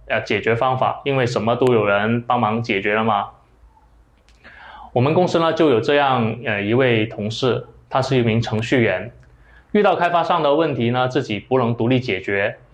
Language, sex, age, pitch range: Chinese, male, 20-39, 115-135 Hz